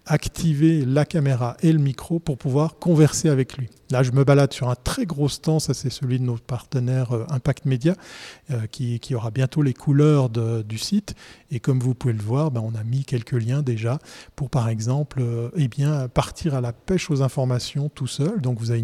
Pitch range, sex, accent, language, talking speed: 120-145 Hz, male, French, French, 205 wpm